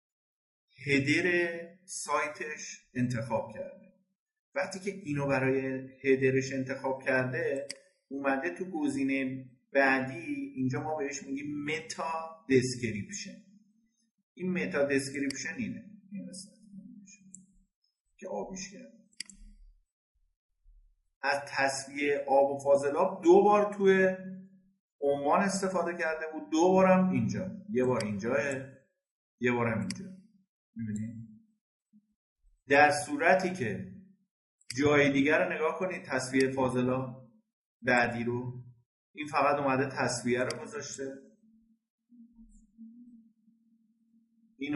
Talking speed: 95 wpm